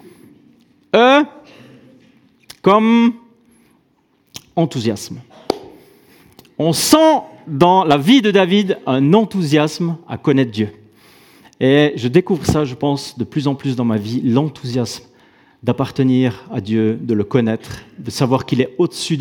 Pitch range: 140-210 Hz